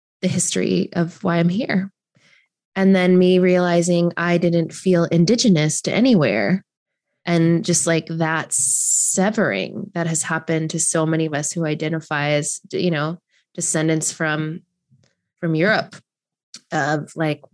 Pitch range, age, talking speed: 160-190 Hz, 20-39, 135 wpm